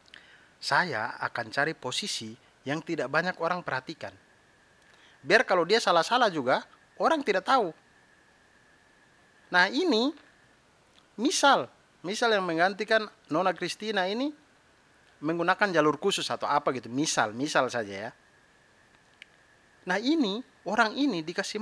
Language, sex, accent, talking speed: Indonesian, male, native, 115 wpm